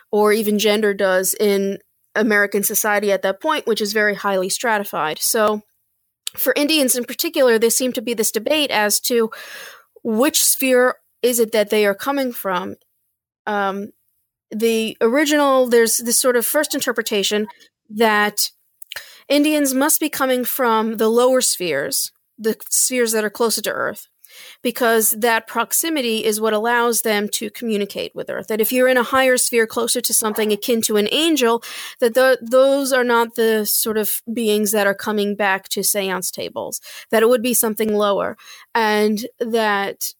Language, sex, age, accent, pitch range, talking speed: English, female, 30-49, American, 205-245 Hz, 165 wpm